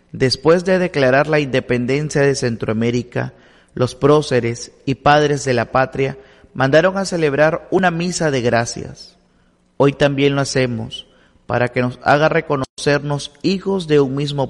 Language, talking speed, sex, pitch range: Spanish, 140 wpm, male, 120-145 Hz